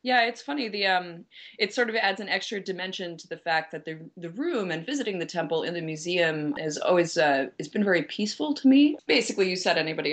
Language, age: English, 20-39